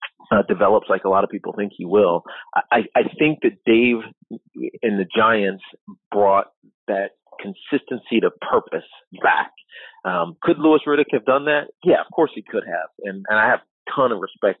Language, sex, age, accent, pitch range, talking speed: English, male, 40-59, American, 95-145 Hz, 180 wpm